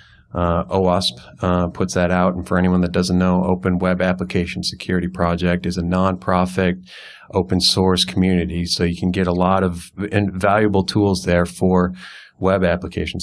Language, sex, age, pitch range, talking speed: English, male, 30-49, 90-95 Hz, 165 wpm